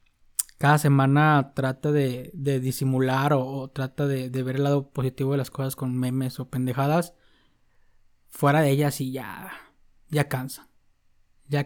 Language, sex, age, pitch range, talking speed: Spanish, male, 20-39, 130-150 Hz, 155 wpm